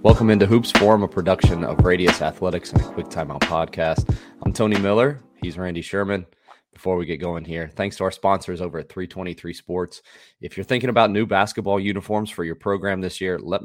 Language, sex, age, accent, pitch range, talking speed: English, male, 30-49, American, 85-100 Hz, 200 wpm